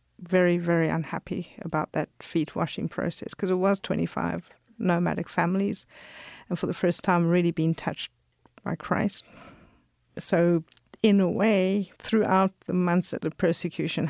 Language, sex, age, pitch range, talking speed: English, female, 50-69, 165-190 Hz, 140 wpm